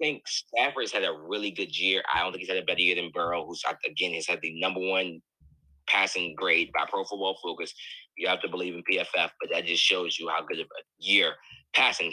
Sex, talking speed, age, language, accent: male, 235 wpm, 20-39, English, American